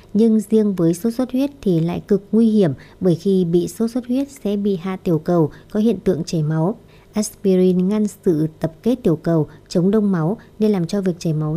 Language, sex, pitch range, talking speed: Vietnamese, male, 170-220 Hz, 225 wpm